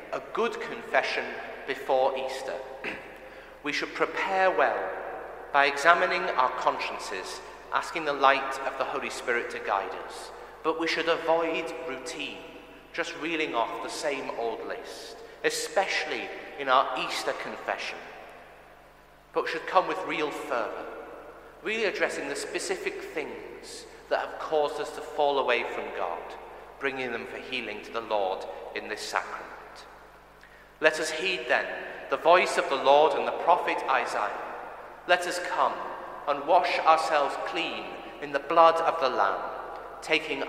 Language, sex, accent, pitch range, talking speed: English, male, British, 140-180 Hz, 145 wpm